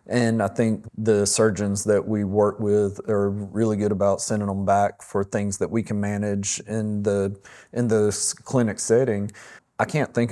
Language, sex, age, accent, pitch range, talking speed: English, male, 30-49, American, 100-110 Hz, 180 wpm